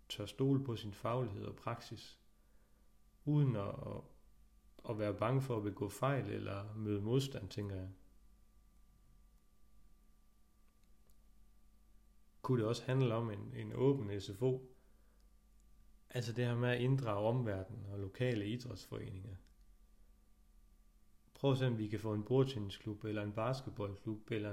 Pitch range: 105-120 Hz